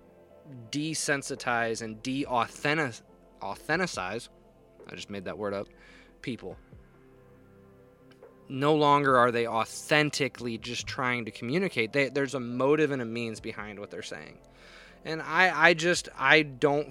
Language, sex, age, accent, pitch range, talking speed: English, male, 20-39, American, 110-140 Hz, 135 wpm